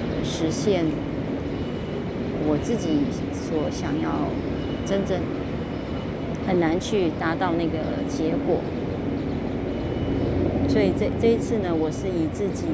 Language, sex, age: Chinese, female, 30-49